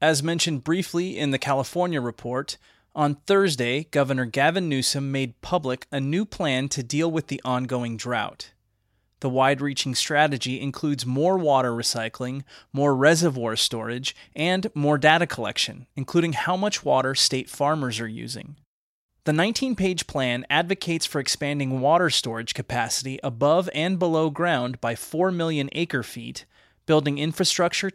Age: 30-49